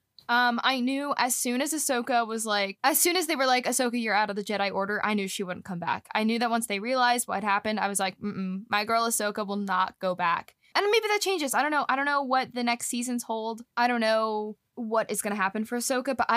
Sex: female